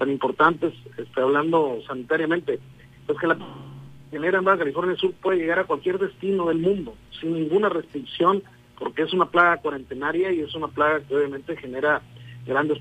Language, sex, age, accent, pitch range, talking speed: Spanish, male, 50-69, Mexican, 140-195 Hz, 170 wpm